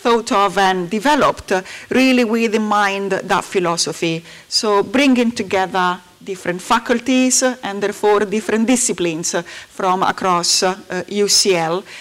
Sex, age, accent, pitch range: female, 40-59, Italian, 185-230 Hz